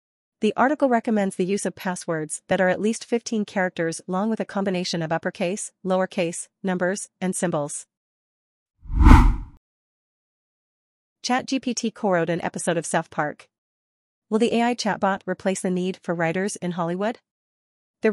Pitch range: 170-200 Hz